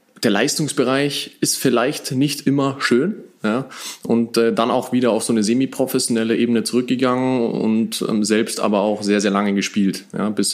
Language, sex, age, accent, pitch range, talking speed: German, male, 20-39, German, 105-120 Hz, 170 wpm